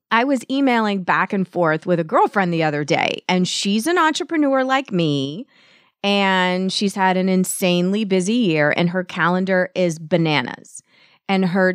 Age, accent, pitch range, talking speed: 30-49, American, 180-235 Hz, 165 wpm